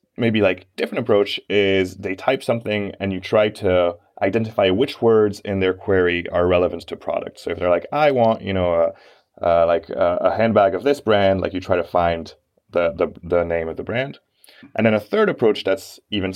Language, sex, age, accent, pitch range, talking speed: English, male, 20-39, American, 90-110 Hz, 210 wpm